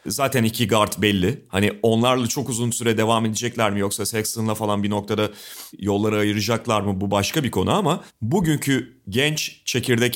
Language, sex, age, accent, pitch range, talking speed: Turkish, male, 40-59, native, 105-135 Hz, 165 wpm